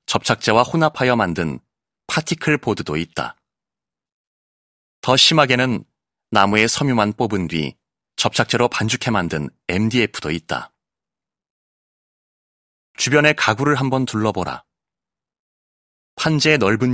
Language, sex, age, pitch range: Korean, male, 30-49, 100-130 Hz